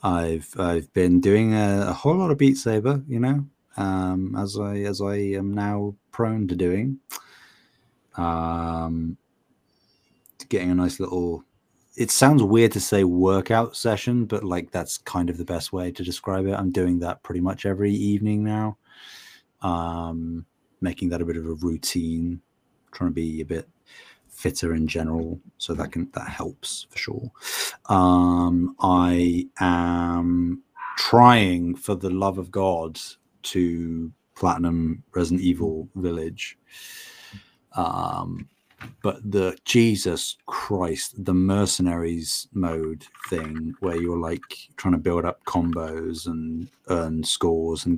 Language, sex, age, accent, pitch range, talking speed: English, male, 30-49, British, 85-100 Hz, 140 wpm